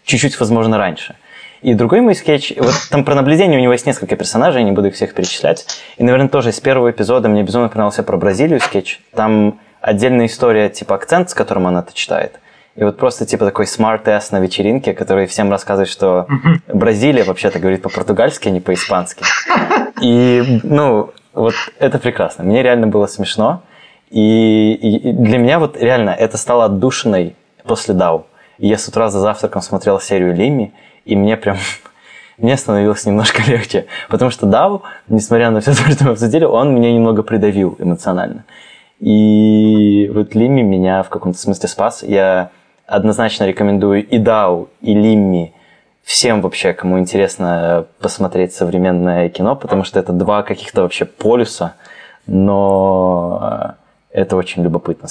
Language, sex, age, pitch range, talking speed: Russian, male, 20-39, 95-120 Hz, 160 wpm